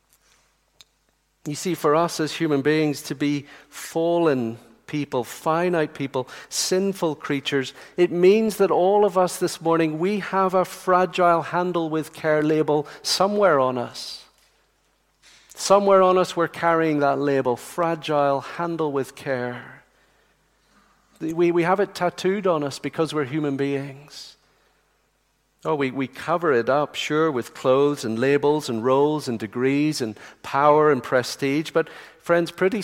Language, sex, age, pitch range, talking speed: English, male, 50-69, 140-170 Hz, 145 wpm